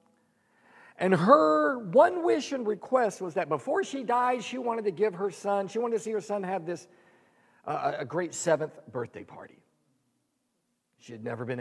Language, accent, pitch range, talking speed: English, American, 170-235 Hz, 180 wpm